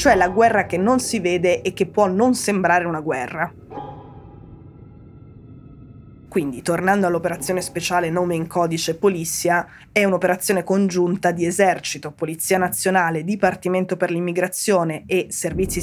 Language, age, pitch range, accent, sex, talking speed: Italian, 20-39, 170-190 Hz, native, female, 130 wpm